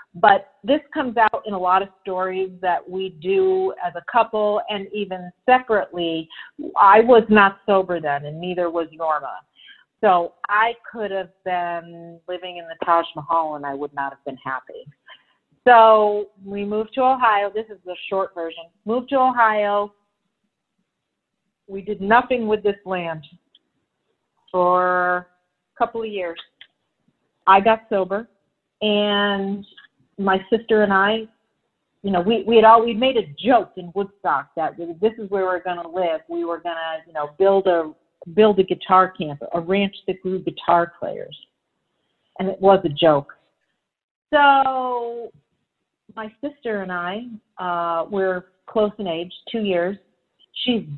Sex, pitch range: female, 175-215 Hz